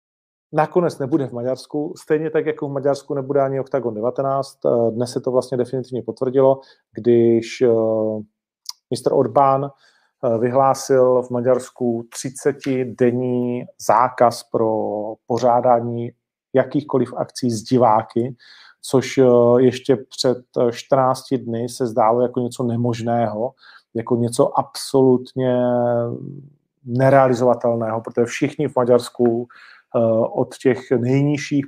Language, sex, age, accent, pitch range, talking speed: Czech, male, 40-59, native, 120-135 Hz, 105 wpm